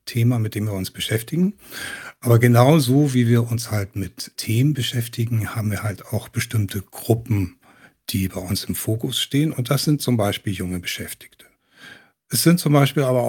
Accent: German